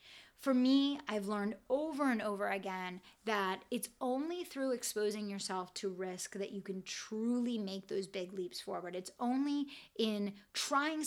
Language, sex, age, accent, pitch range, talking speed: English, female, 30-49, American, 190-235 Hz, 155 wpm